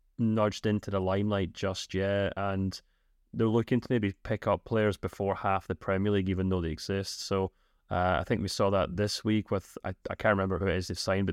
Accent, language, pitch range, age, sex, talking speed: British, English, 95-110 Hz, 30-49, male, 220 wpm